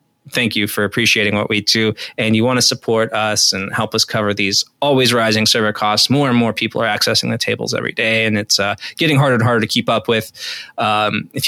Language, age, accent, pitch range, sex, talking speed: English, 20-39, American, 105-125 Hz, male, 235 wpm